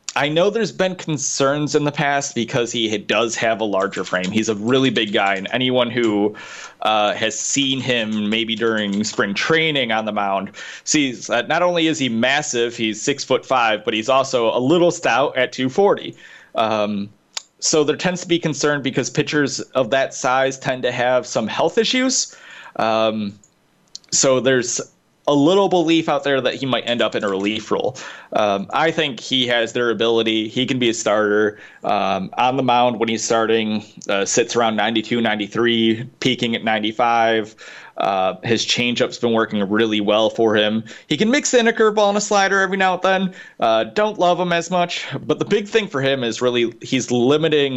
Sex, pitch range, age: male, 110-145 Hz, 30-49